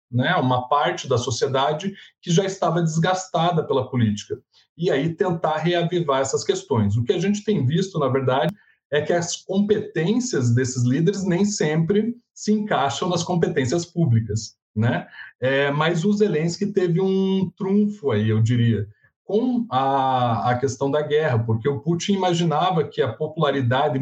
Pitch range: 130-180 Hz